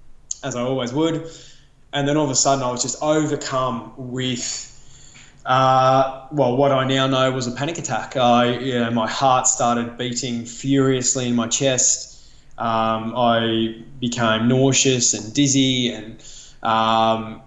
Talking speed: 150 wpm